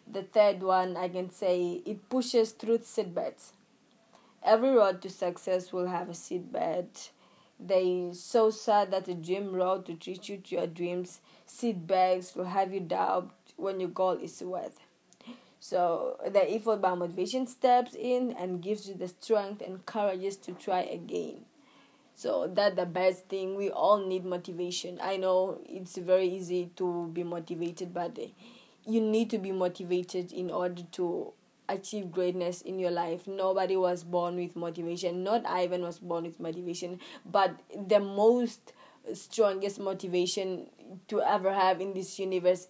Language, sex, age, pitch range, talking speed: English, female, 20-39, 180-205 Hz, 155 wpm